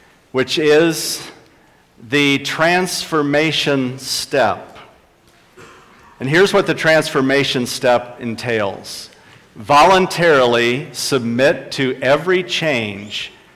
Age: 50-69